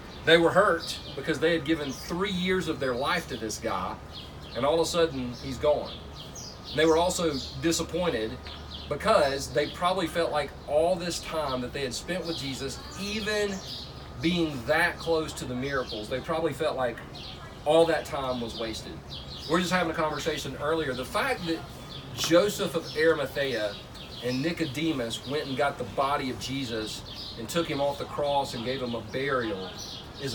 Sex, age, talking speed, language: male, 40-59, 180 wpm, English